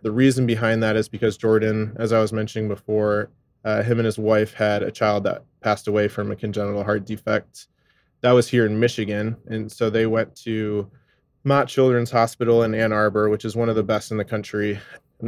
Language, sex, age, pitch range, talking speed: English, male, 20-39, 105-115 Hz, 210 wpm